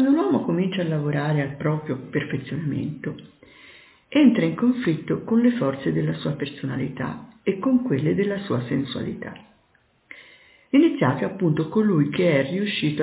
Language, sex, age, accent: Italian, female, 50-69, native